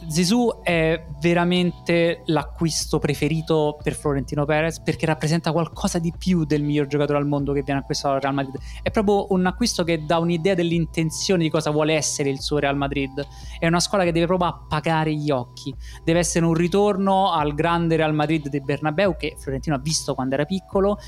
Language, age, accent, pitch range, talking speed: Italian, 20-39, native, 145-180 Hz, 190 wpm